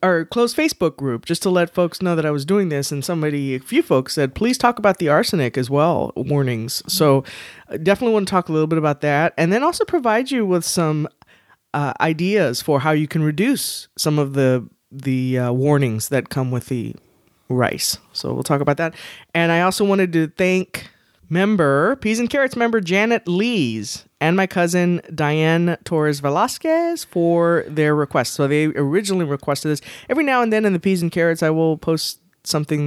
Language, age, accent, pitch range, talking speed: English, 20-39, American, 140-190 Hz, 195 wpm